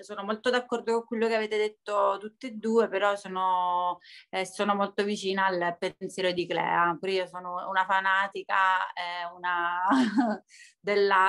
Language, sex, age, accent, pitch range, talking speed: Italian, female, 30-49, native, 185-210 Hz, 155 wpm